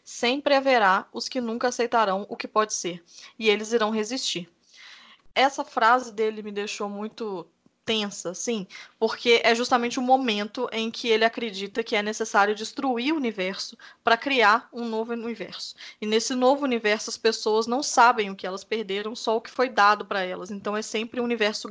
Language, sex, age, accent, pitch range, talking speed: Portuguese, female, 10-29, Brazilian, 210-250 Hz, 180 wpm